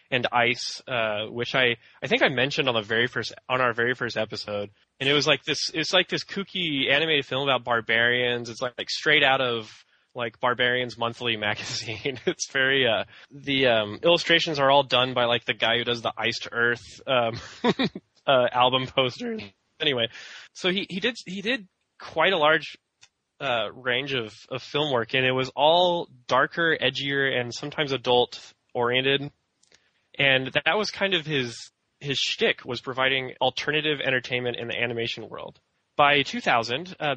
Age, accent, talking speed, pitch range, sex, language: 10-29, American, 175 wpm, 120-145 Hz, male, English